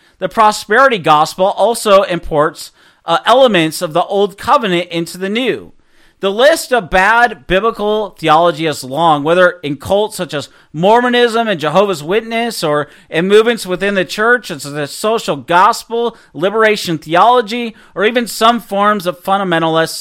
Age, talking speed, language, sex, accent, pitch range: 40-59, 150 wpm, English, male, American, 160-215 Hz